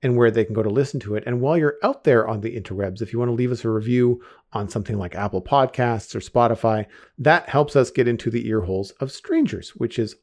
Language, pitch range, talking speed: English, 110-130 Hz, 250 wpm